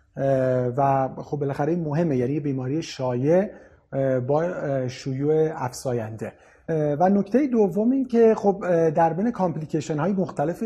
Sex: male